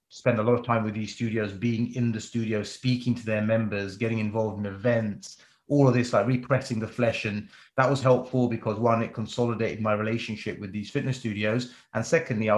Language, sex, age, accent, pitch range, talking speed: English, male, 30-49, British, 105-125 Hz, 210 wpm